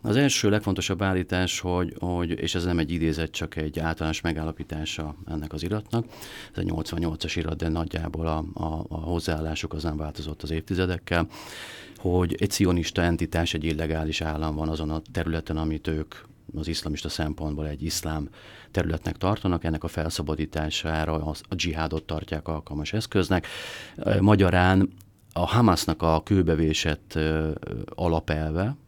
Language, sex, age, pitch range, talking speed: Hungarian, male, 30-49, 80-95 Hz, 140 wpm